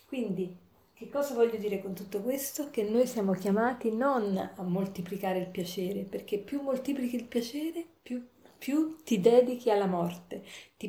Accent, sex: native, female